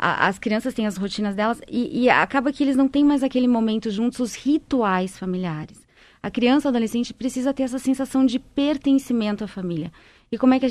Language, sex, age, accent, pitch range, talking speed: Portuguese, female, 20-39, Brazilian, 200-250 Hz, 205 wpm